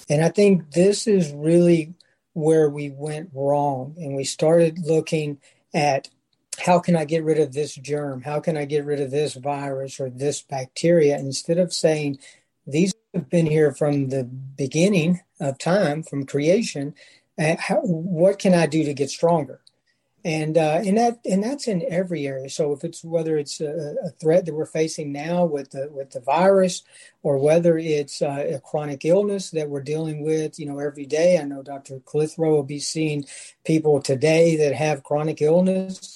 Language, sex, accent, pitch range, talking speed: English, male, American, 145-170 Hz, 185 wpm